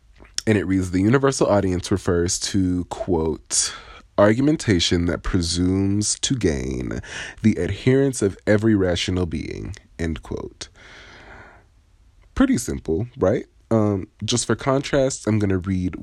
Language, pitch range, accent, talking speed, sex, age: English, 85-105 Hz, American, 125 wpm, male, 20-39